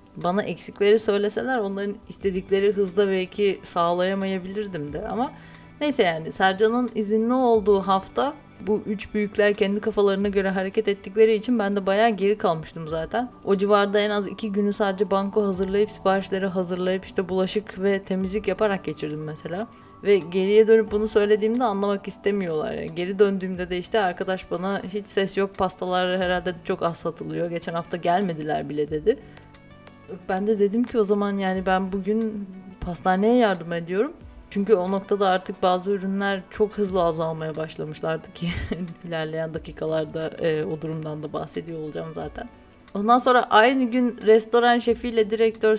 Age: 30-49